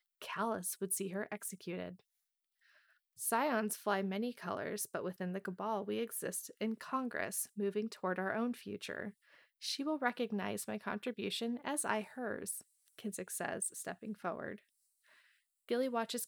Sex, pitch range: female, 190-225 Hz